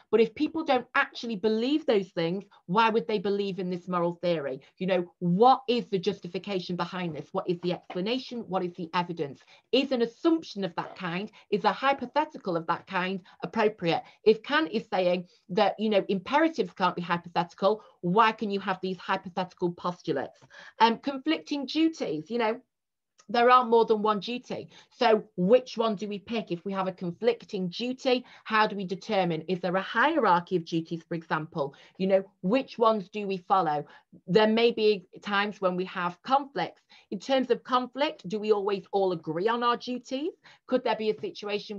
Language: English